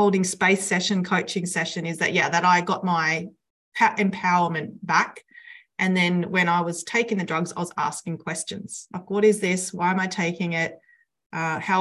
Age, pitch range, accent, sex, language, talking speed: 30-49, 170-210 Hz, Australian, female, English, 190 wpm